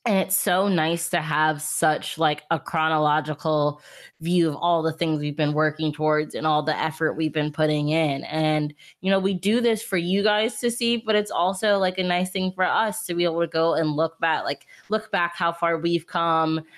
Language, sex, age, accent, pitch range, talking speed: English, female, 20-39, American, 155-180 Hz, 220 wpm